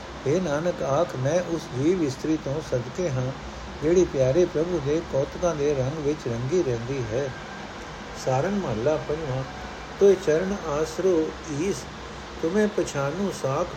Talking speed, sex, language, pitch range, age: 135 wpm, male, Punjabi, 135-175 Hz, 60-79